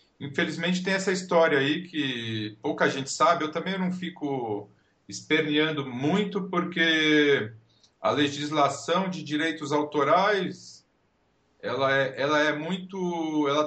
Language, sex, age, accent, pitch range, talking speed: Portuguese, male, 40-59, Brazilian, 140-185 Hz, 115 wpm